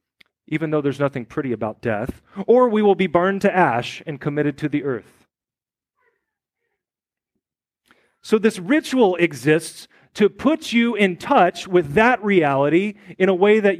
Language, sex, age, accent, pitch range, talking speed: English, male, 40-59, American, 140-200 Hz, 150 wpm